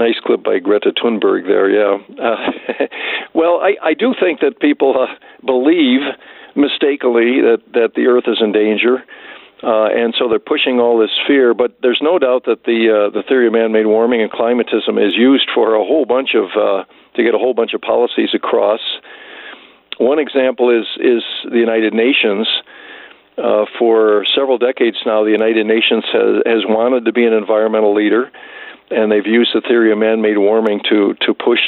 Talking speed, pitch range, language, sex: 185 wpm, 110-140 Hz, English, male